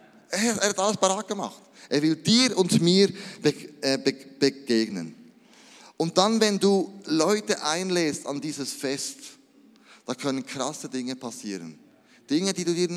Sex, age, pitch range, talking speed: male, 20-39, 130-195 Hz, 145 wpm